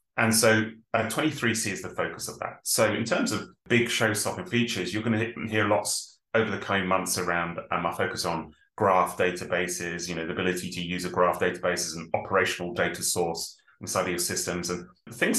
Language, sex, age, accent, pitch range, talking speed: English, male, 30-49, British, 90-110 Hz, 215 wpm